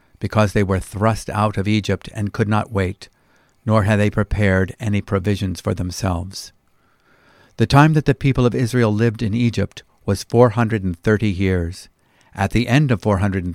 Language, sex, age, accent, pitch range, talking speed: English, male, 50-69, American, 95-115 Hz, 185 wpm